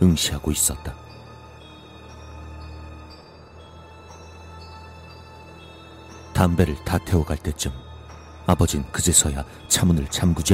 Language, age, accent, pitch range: Korean, 40-59, native, 75-90 Hz